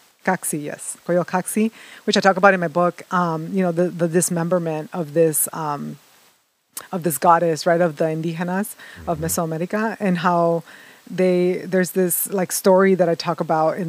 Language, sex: English, female